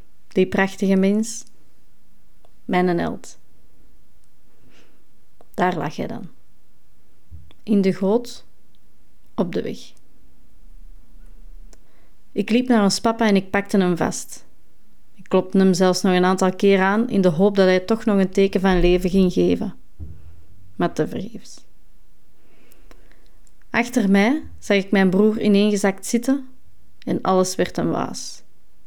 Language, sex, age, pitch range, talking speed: Dutch, female, 30-49, 185-215 Hz, 135 wpm